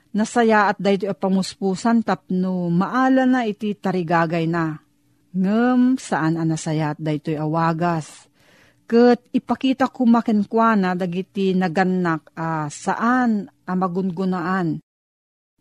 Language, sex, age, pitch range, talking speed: Filipino, female, 40-59, 175-230 Hz, 105 wpm